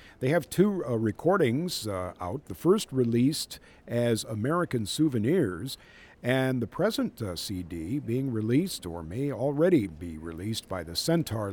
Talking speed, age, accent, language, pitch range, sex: 145 wpm, 50-69, American, English, 105-155 Hz, male